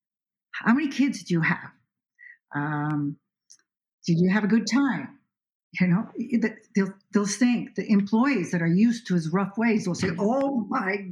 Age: 60-79